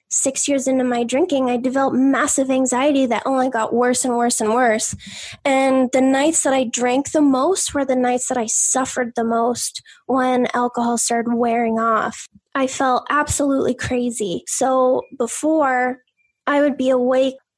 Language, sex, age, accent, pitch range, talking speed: English, female, 10-29, American, 245-275 Hz, 165 wpm